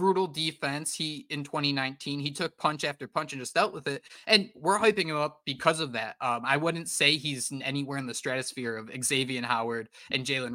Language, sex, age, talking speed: English, male, 20-39, 210 wpm